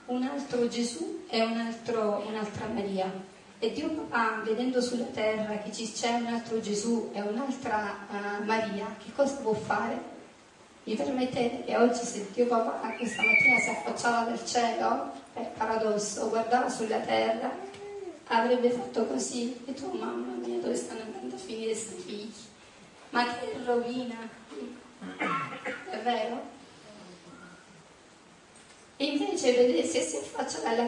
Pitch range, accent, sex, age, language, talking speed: 220-255 Hz, native, female, 30-49, Italian, 135 wpm